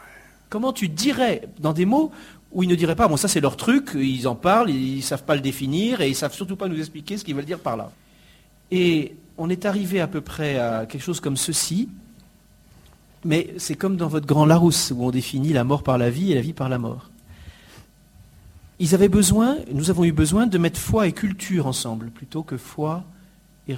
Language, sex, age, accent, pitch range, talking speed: French, male, 40-59, French, 140-195 Hz, 225 wpm